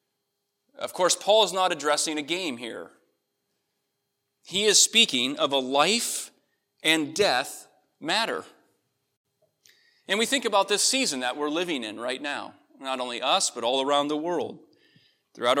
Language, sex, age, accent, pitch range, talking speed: English, male, 30-49, American, 135-190 Hz, 150 wpm